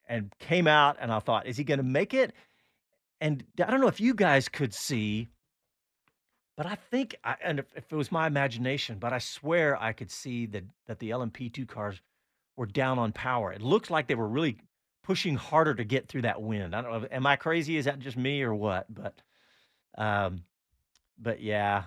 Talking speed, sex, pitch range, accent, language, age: 205 wpm, male, 110-155 Hz, American, English, 40-59